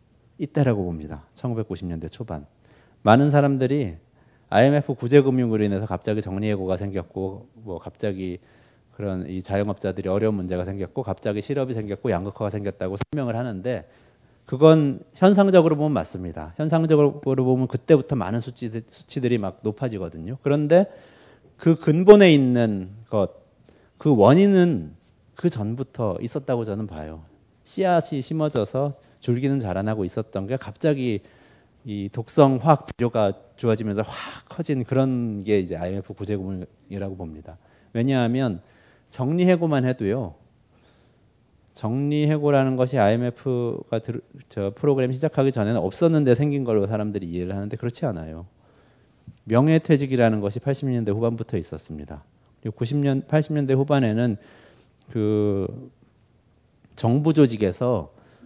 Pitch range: 100-140 Hz